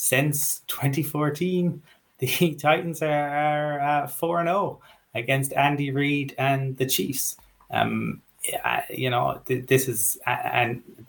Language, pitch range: English, 110-130 Hz